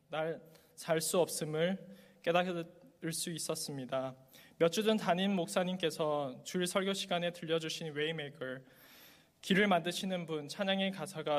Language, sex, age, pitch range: Korean, male, 20-39, 145-180 Hz